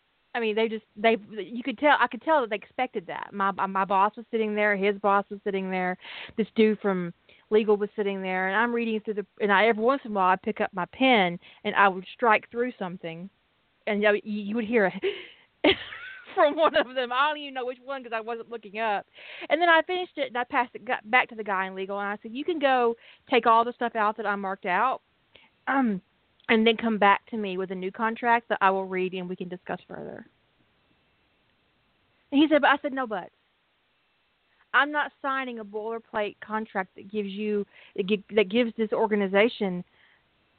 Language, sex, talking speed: English, female, 230 wpm